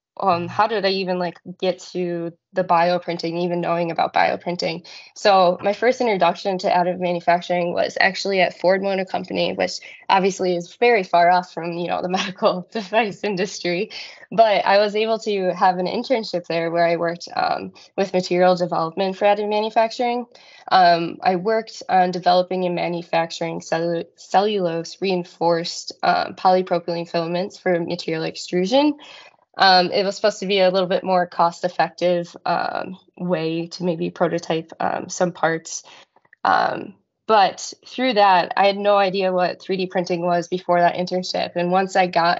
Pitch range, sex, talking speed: 170-195 Hz, female, 160 wpm